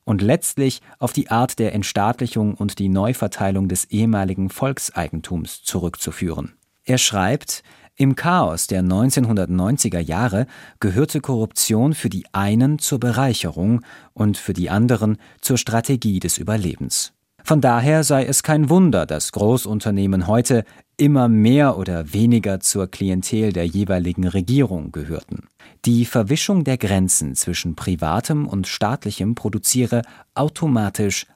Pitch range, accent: 95-130 Hz, German